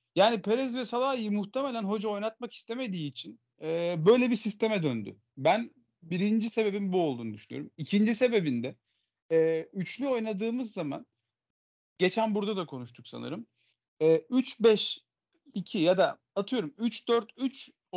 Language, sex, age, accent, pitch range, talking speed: Turkish, male, 40-59, native, 165-230 Hz, 125 wpm